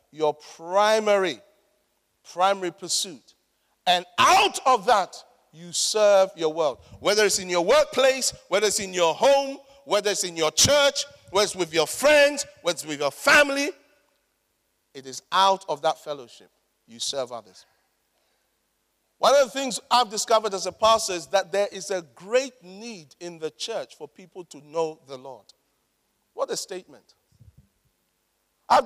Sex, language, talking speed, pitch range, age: male, English, 155 wpm, 180-285 Hz, 50-69